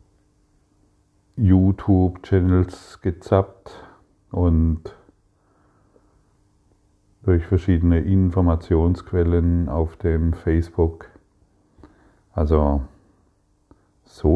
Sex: male